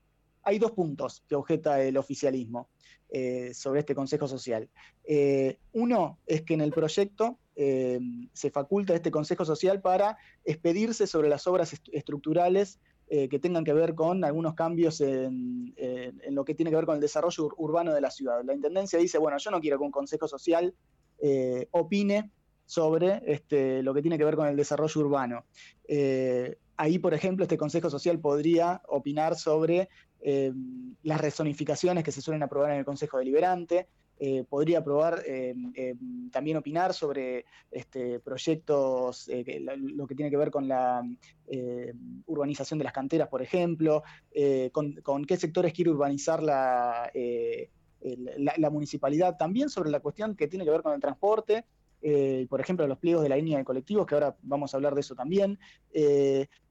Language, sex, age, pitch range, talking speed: Spanish, male, 20-39, 140-170 Hz, 170 wpm